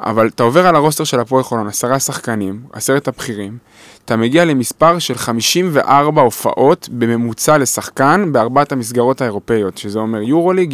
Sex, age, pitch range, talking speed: male, 20-39, 115-145 Hz, 145 wpm